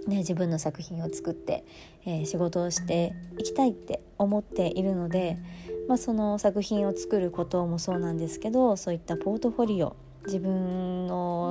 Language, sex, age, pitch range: Japanese, male, 20-39, 165-205 Hz